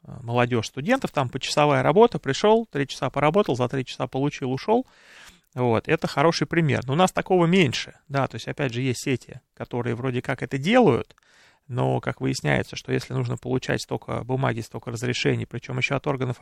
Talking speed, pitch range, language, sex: 185 wpm, 120-150 Hz, Russian, male